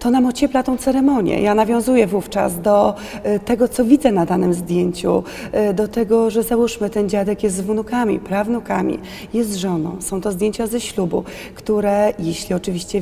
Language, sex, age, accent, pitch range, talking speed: Polish, female, 30-49, native, 185-220 Hz, 165 wpm